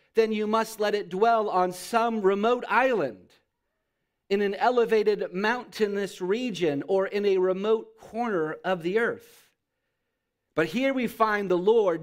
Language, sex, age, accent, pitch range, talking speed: English, male, 40-59, American, 170-230 Hz, 145 wpm